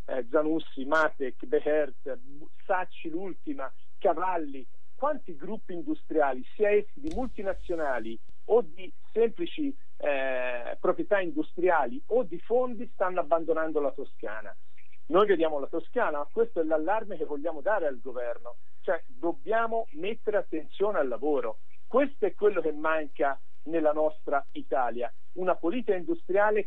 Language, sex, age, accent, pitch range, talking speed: Italian, male, 50-69, native, 160-245 Hz, 125 wpm